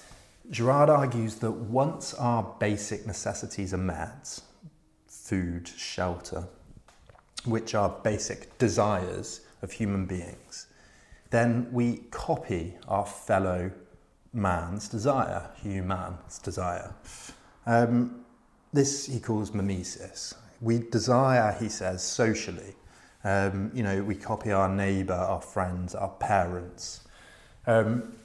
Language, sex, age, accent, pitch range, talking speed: English, male, 30-49, British, 95-120 Hz, 105 wpm